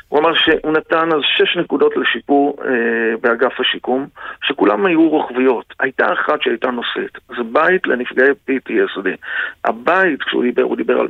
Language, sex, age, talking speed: Hebrew, male, 50-69, 150 wpm